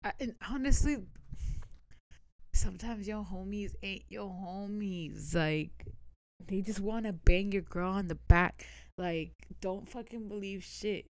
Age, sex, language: 20-39, female, English